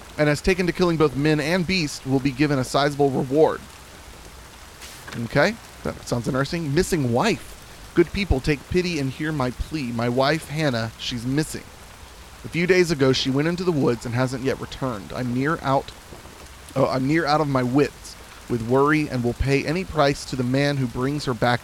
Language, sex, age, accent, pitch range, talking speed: English, male, 30-49, American, 120-155 Hz, 195 wpm